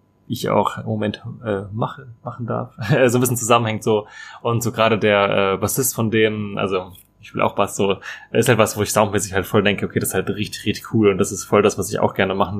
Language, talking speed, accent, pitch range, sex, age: German, 255 wpm, German, 105-120 Hz, male, 20-39